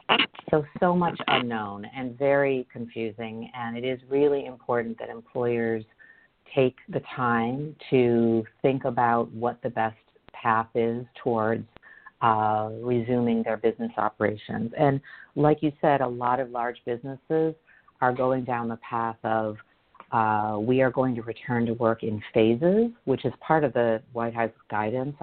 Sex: female